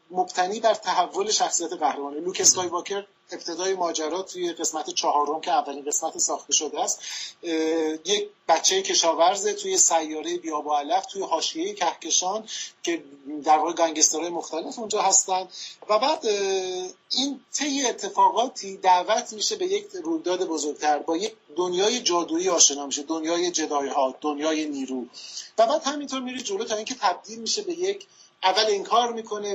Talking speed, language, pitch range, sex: 135 wpm, Persian, 155-250 Hz, male